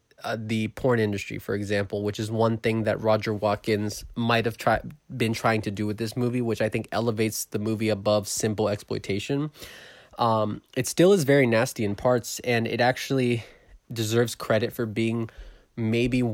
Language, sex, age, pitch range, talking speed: English, male, 20-39, 105-120 Hz, 175 wpm